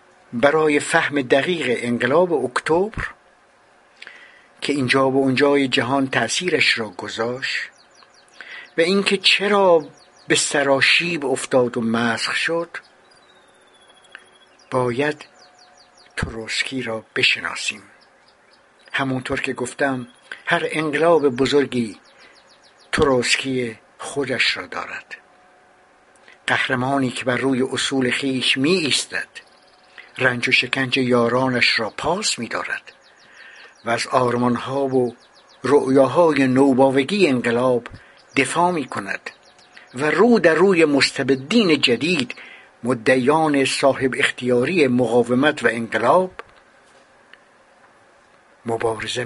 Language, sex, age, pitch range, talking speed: Persian, male, 60-79, 125-150 Hz, 90 wpm